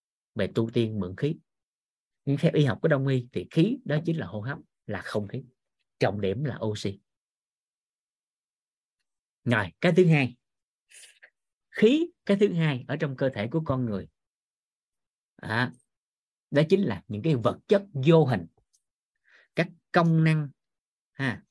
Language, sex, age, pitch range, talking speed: Vietnamese, male, 20-39, 120-170 Hz, 155 wpm